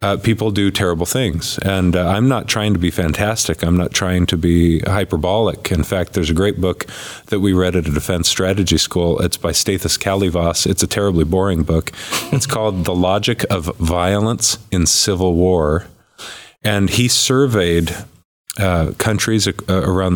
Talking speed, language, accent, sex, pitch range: 175 wpm, English, American, male, 90-110 Hz